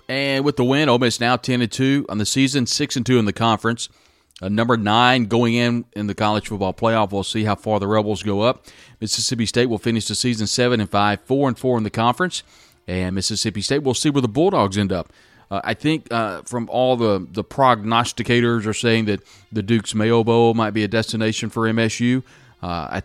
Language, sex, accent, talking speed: English, male, American, 215 wpm